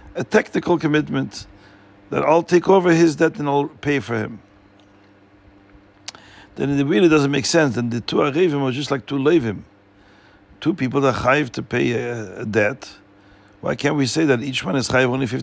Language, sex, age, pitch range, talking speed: English, male, 50-69, 100-145 Hz, 195 wpm